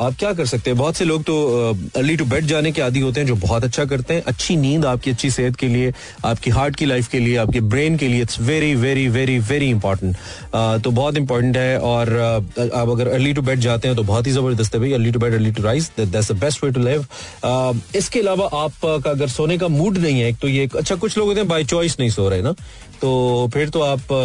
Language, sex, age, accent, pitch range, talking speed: Hindi, male, 30-49, native, 115-150 Hz, 230 wpm